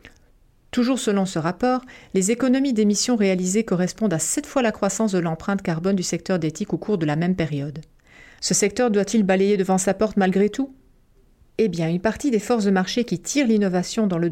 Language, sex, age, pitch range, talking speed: French, female, 40-59, 170-225 Hz, 200 wpm